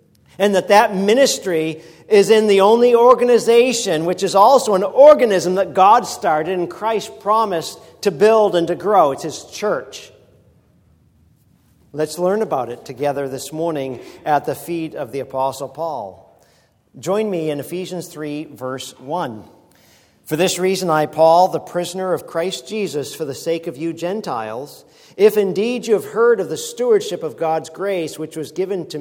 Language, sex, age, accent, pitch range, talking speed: English, male, 50-69, American, 155-200 Hz, 165 wpm